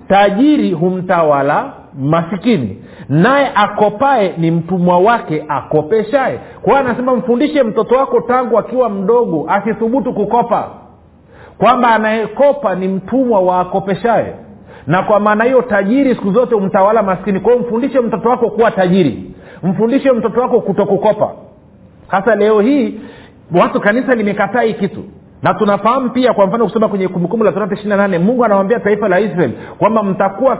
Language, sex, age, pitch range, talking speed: Swahili, male, 50-69, 185-235 Hz, 135 wpm